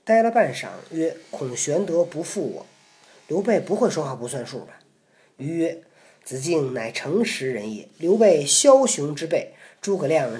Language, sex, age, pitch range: Chinese, male, 40-59, 150-215 Hz